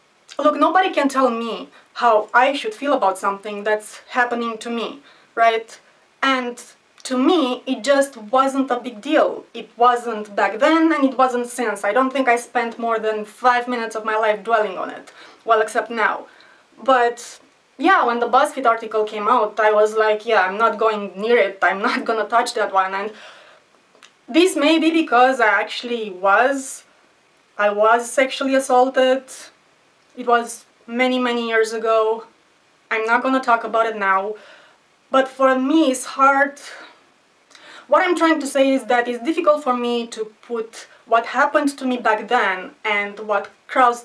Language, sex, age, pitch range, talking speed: English, female, 20-39, 220-265 Hz, 170 wpm